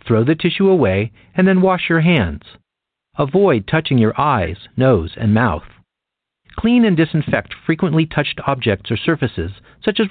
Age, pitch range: 50-69, 145-215 Hz